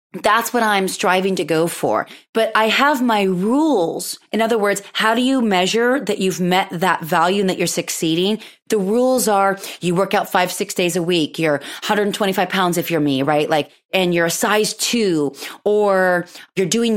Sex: female